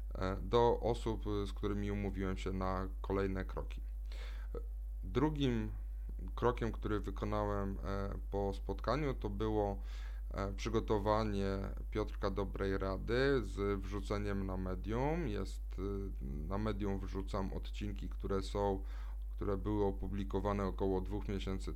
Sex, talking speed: male, 105 wpm